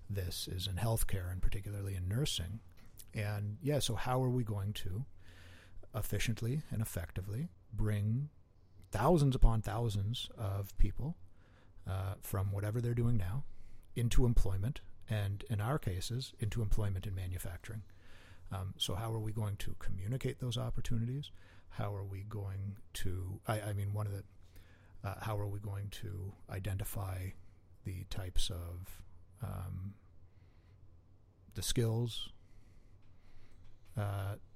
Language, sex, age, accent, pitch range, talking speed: English, male, 50-69, American, 95-115 Hz, 130 wpm